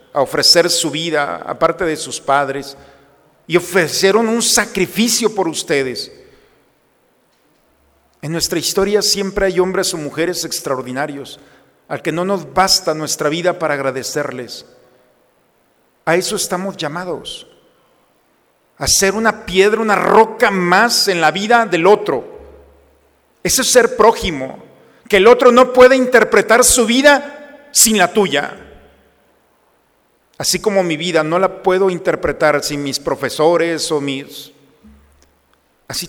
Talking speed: 125 wpm